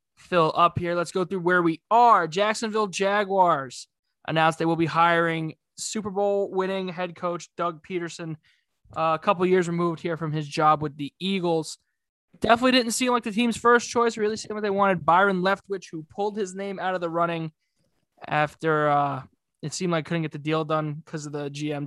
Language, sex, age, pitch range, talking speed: English, male, 20-39, 155-185 Hz, 200 wpm